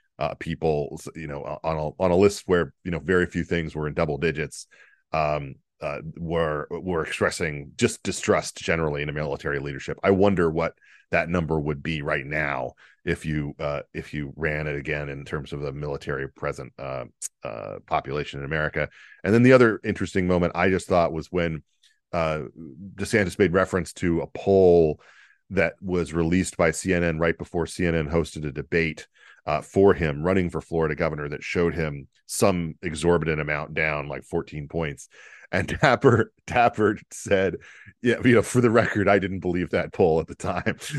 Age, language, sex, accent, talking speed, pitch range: 40-59, English, male, American, 180 wpm, 75-100 Hz